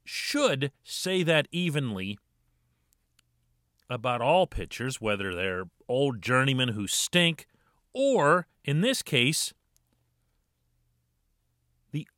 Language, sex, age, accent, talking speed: English, male, 40-59, American, 90 wpm